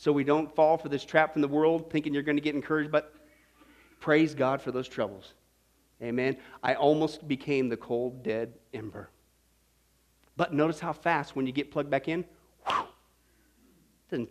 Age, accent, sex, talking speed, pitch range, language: 40-59, American, male, 180 wpm, 140-225 Hz, English